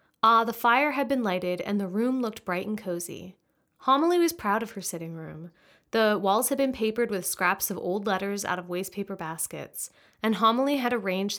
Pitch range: 185-240 Hz